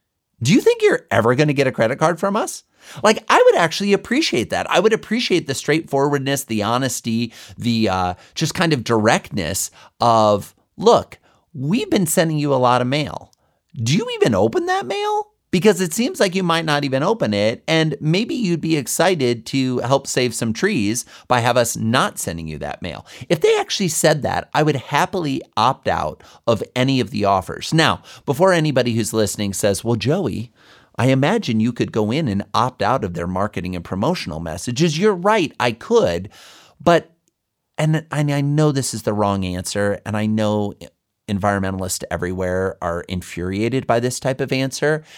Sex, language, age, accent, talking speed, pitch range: male, English, 30-49, American, 185 wpm, 100-155 Hz